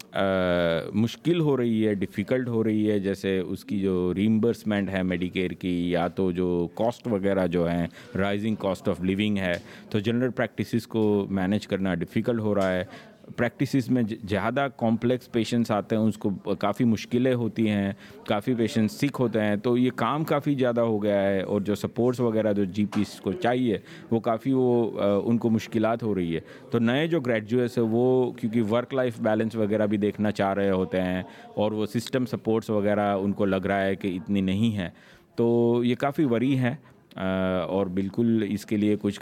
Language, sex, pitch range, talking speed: Urdu, male, 95-115 Hz, 190 wpm